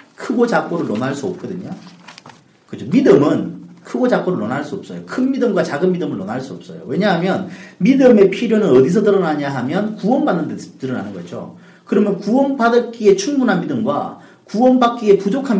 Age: 40-59